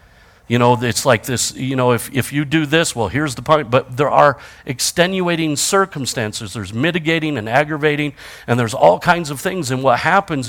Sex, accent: male, American